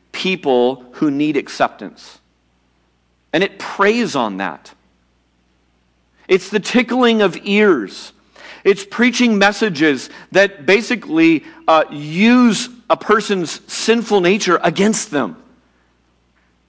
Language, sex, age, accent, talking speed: English, male, 40-59, American, 95 wpm